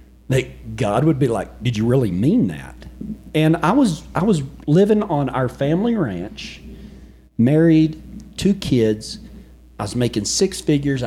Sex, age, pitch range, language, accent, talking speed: male, 40-59, 120-170 Hz, English, American, 145 wpm